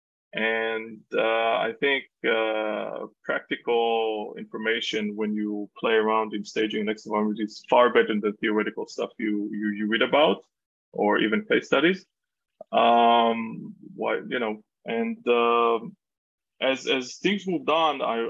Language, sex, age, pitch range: English, male, 20-39, 110-155 Hz